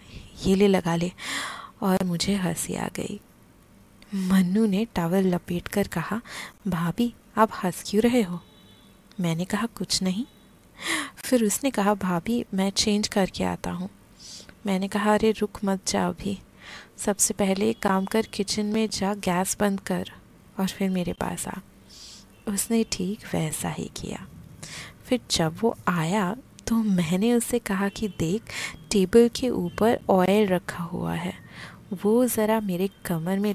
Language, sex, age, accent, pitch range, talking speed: Hindi, female, 20-39, native, 175-215 Hz, 150 wpm